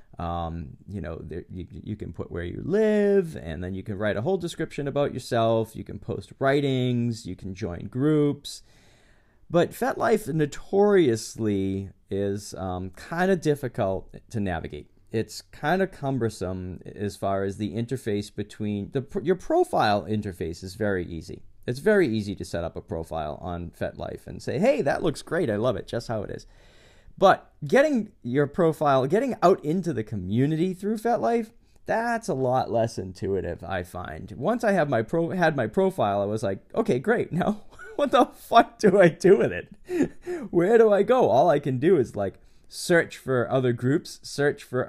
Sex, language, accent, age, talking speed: male, English, American, 40-59, 180 wpm